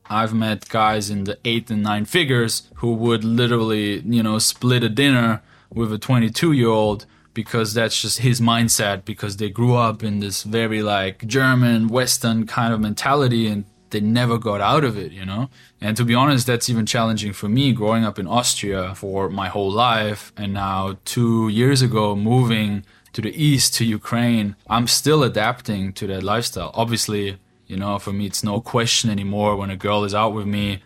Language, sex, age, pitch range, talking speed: English, male, 20-39, 100-120 Hz, 195 wpm